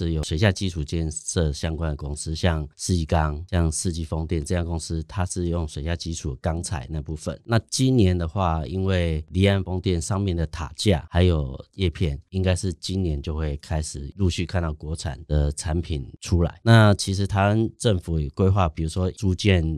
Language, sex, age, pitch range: Chinese, male, 30-49, 80-95 Hz